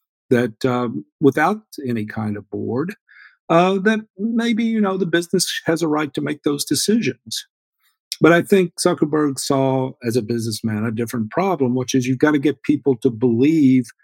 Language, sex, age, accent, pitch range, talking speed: English, male, 50-69, American, 115-165 Hz, 175 wpm